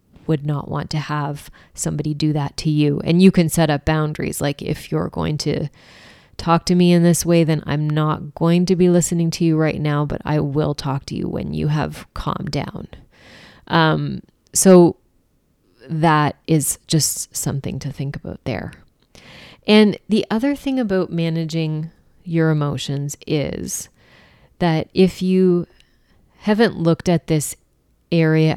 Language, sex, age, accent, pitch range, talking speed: English, female, 30-49, American, 150-170 Hz, 160 wpm